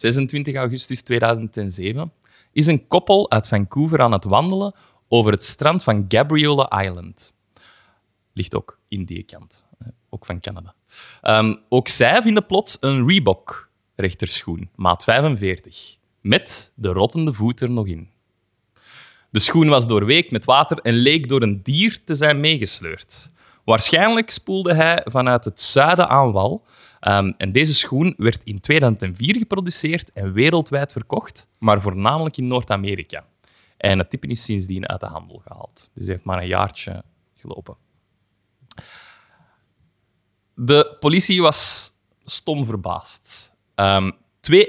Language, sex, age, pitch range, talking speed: Dutch, male, 20-39, 100-150 Hz, 135 wpm